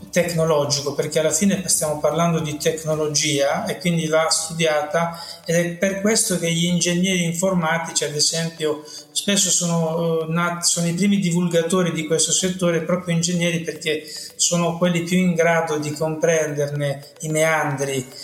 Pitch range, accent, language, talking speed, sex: 155-175 Hz, native, Italian, 145 wpm, male